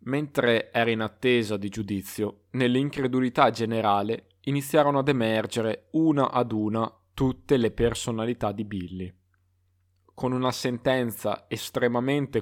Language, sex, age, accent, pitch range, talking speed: Italian, male, 20-39, native, 100-130 Hz, 110 wpm